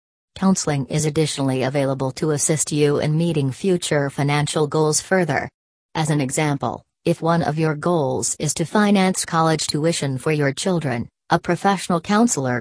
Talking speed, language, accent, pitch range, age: 150 wpm, English, American, 150-180 Hz, 40-59